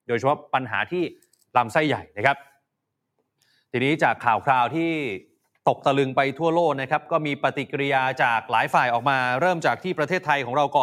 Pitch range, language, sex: 135-170 Hz, Thai, male